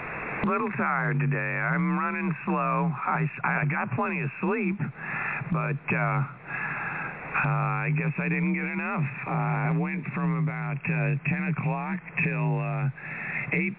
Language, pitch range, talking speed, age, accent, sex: English, 145-180 Hz, 140 wpm, 60-79, American, male